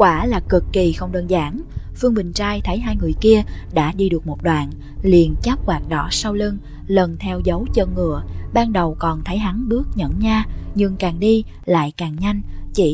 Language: English